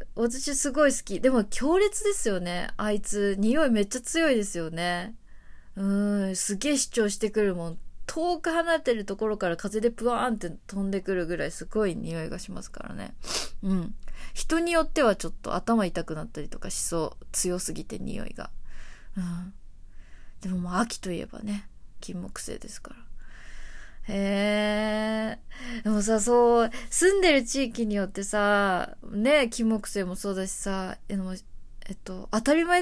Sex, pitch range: female, 185-240 Hz